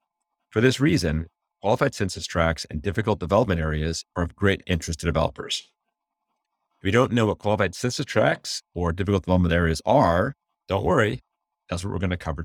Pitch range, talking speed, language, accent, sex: 85-105 Hz, 180 wpm, English, American, male